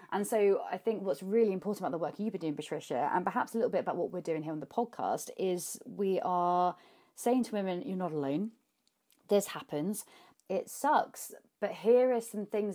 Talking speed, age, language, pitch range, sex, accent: 210 wpm, 30-49, English, 175-225 Hz, female, British